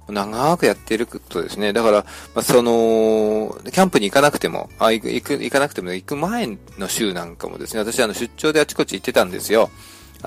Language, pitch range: Japanese, 100-145 Hz